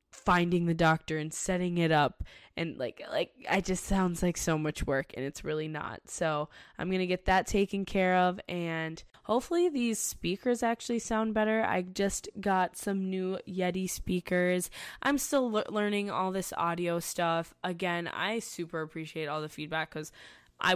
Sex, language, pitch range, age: female, English, 160-205 Hz, 10-29